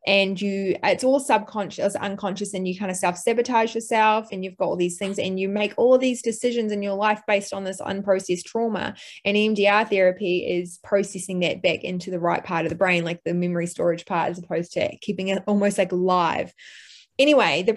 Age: 20-39